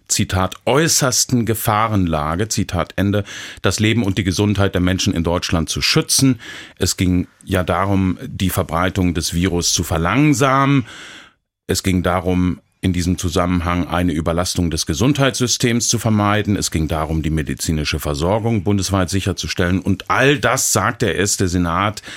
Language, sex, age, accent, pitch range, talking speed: German, male, 40-59, German, 85-105 Hz, 145 wpm